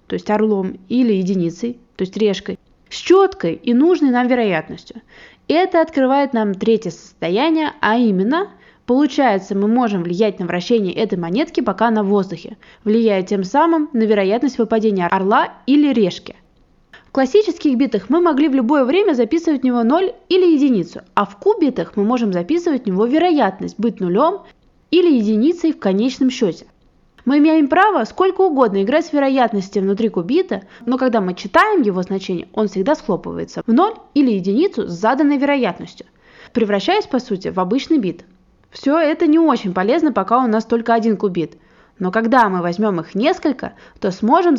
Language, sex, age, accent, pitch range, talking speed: Russian, female, 20-39, native, 200-300 Hz, 165 wpm